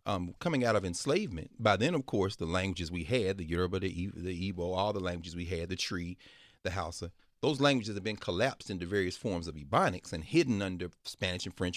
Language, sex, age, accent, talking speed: English, male, 40-59, American, 220 wpm